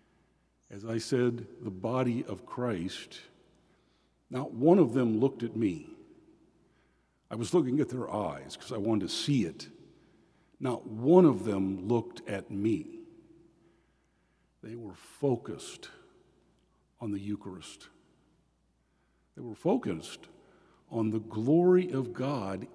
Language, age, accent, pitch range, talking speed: English, 50-69, American, 120-165 Hz, 125 wpm